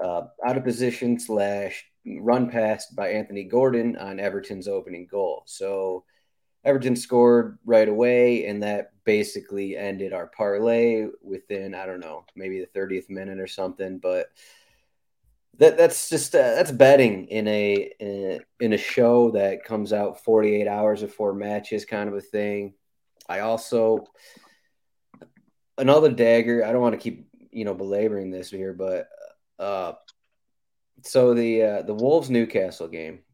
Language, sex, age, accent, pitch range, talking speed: English, male, 30-49, American, 100-120 Hz, 150 wpm